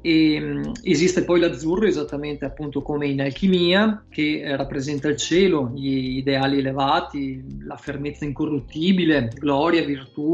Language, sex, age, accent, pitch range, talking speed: Italian, male, 30-49, native, 140-165 Hz, 115 wpm